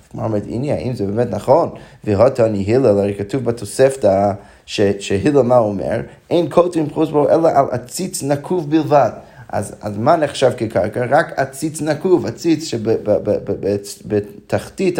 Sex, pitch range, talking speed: male, 120-155 Hz, 130 wpm